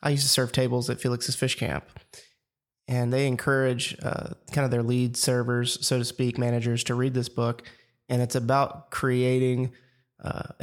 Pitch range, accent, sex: 125-140 Hz, American, male